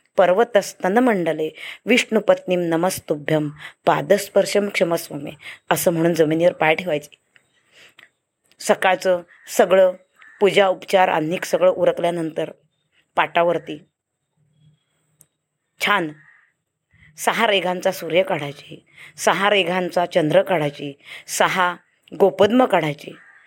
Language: Marathi